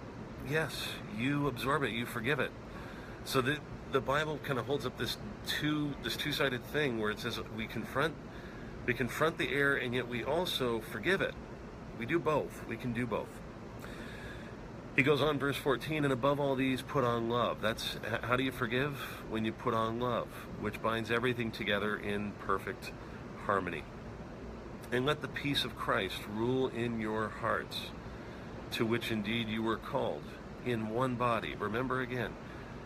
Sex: male